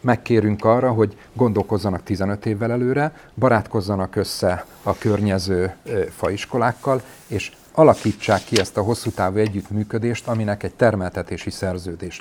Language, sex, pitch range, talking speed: Hungarian, male, 100-125 Hz, 120 wpm